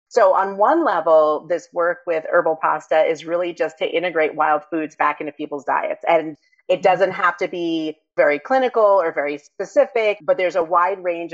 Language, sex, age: English, female, 30-49